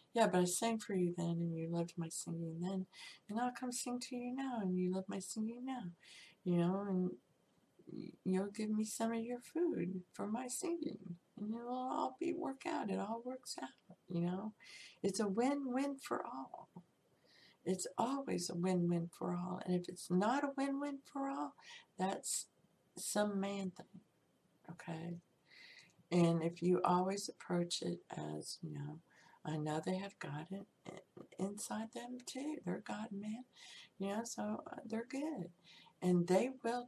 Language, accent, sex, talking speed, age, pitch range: English, American, female, 180 wpm, 60-79, 170-225 Hz